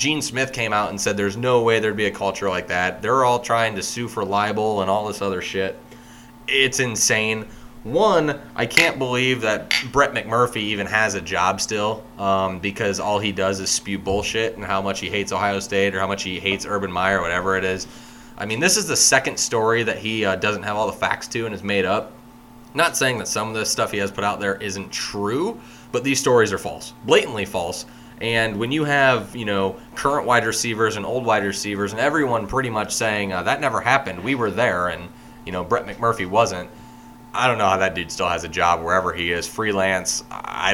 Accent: American